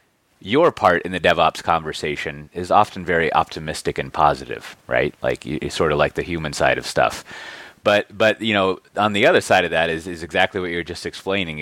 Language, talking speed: English, 205 wpm